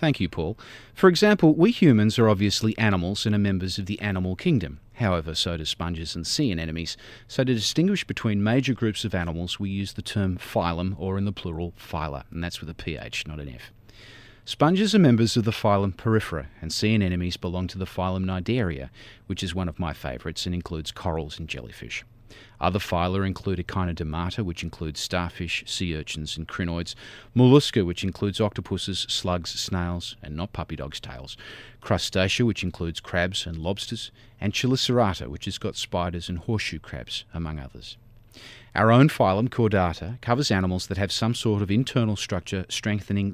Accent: Australian